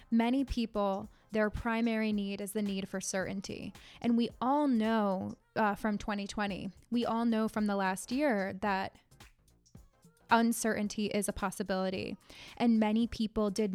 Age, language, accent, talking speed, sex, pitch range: 20-39, English, American, 145 wpm, female, 200-230 Hz